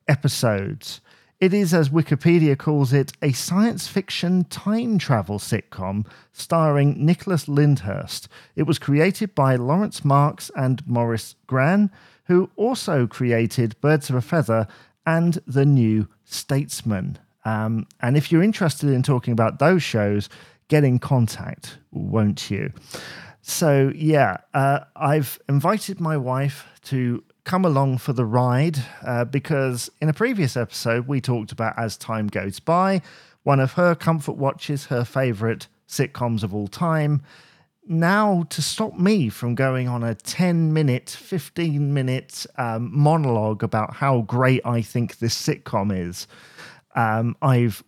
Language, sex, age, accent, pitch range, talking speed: English, male, 40-59, British, 120-160 Hz, 140 wpm